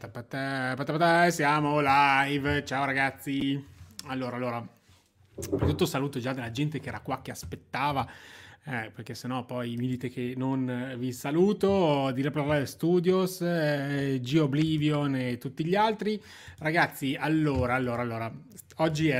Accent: native